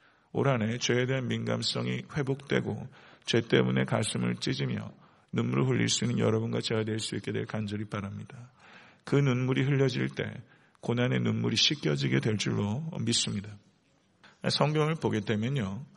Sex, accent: male, native